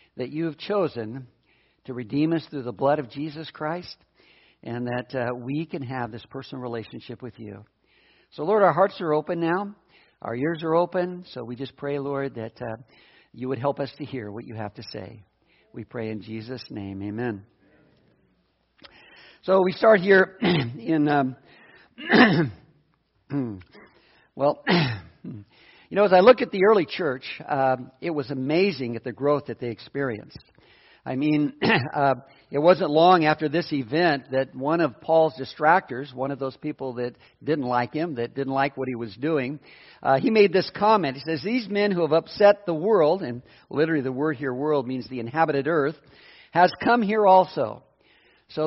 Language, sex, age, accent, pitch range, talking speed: English, male, 60-79, American, 125-165 Hz, 175 wpm